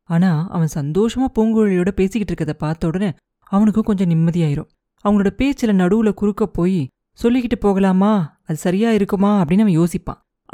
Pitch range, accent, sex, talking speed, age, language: 170-220 Hz, native, female, 135 wpm, 20-39, Tamil